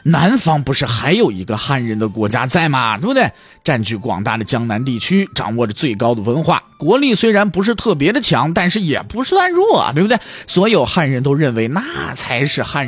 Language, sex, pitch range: Chinese, male, 140-225 Hz